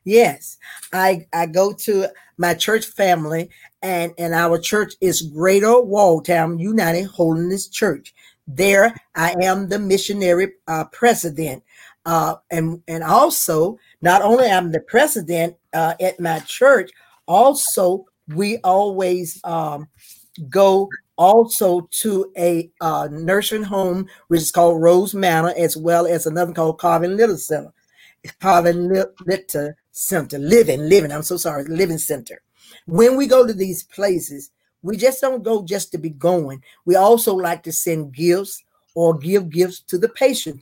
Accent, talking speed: American, 145 wpm